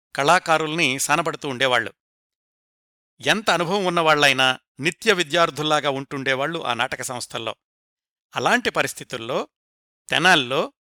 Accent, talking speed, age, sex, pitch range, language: native, 80 wpm, 60-79, male, 140-180 Hz, Telugu